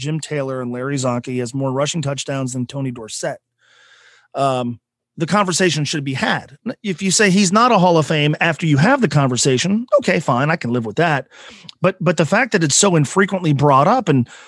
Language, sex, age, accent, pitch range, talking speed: English, male, 30-49, American, 135-175 Hz, 205 wpm